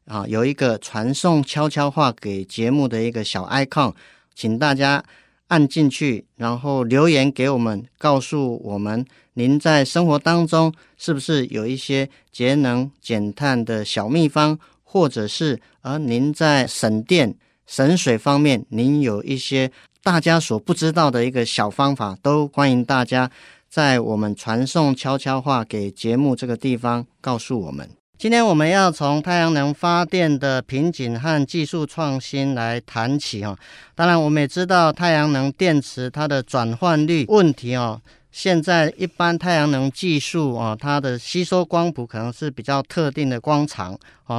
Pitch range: 125-155 Hz